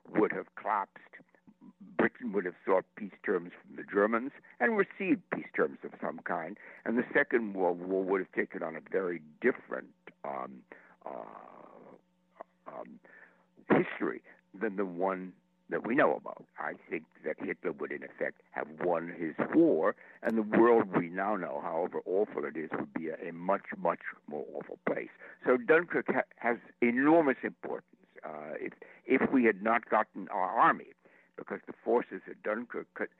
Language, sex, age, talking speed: English, male, 60-79, 165 wpm